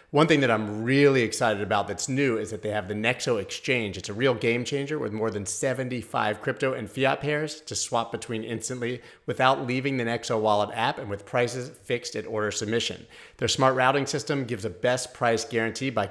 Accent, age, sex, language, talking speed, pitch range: American, 30-49, male, English, 210 wpm, 105-130 Hz